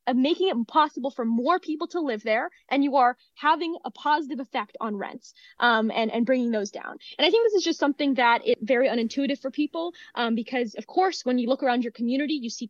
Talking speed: 235 wpm